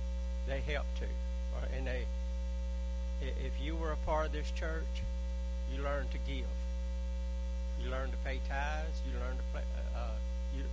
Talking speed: 155 wpm